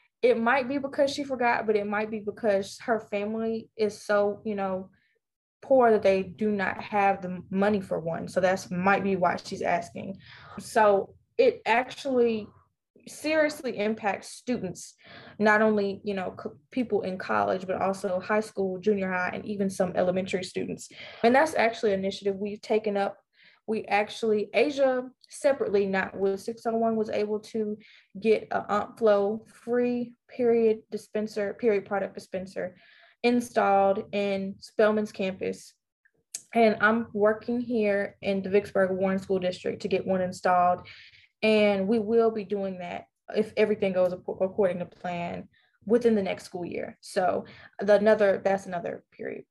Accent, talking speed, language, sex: American, 155 wpm, English, female